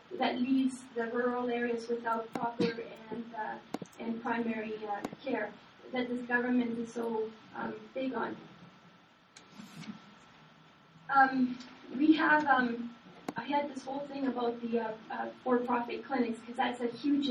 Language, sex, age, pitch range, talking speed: English, female, 20-39, 225-250 Hz, 140 wpm